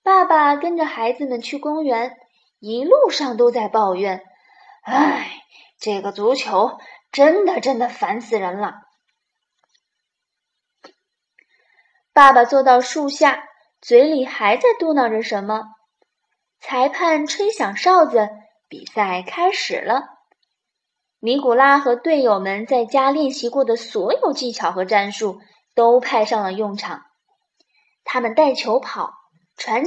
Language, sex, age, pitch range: Chinese, female, 20-39, 220-345 Hz